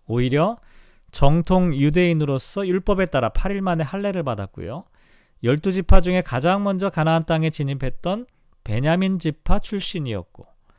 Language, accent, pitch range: Korean, native, 140-190 Hz